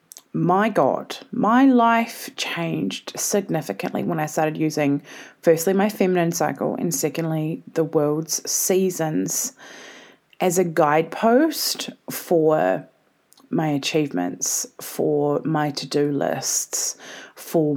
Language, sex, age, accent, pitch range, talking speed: English, female, 20-39, Australian, 150-190 Hz, 100 wpm